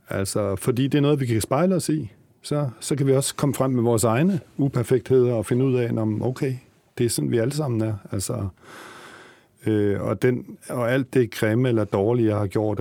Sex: male